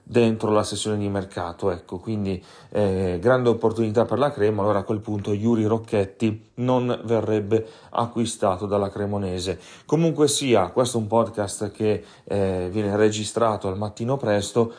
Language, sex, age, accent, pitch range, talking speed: Italian, male, 30-49, native, 105-120 Hz, 150 wpm